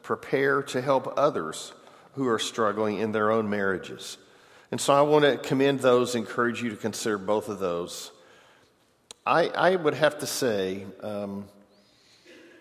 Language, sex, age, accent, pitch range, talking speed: English, male, 50-69, American, 105-130 Hz, 150 wpm